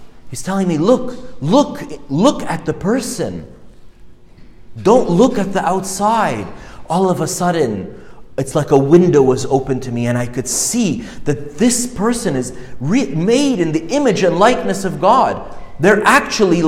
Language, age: English, 30-49